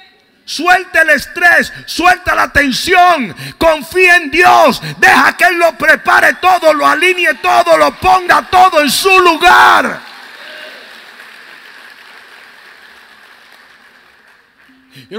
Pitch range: 165-240 Hz